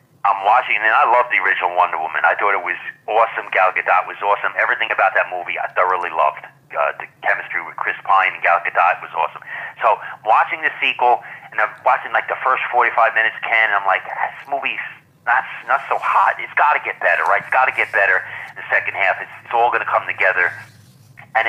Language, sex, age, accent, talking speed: English, male, 40-59, American, 225 wpm